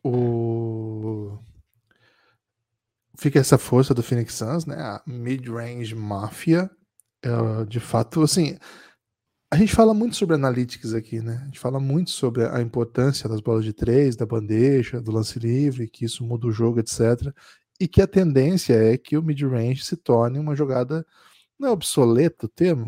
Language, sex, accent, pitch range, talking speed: Portuguese, male, Brazilian, 115-165 Hz, 165 wpm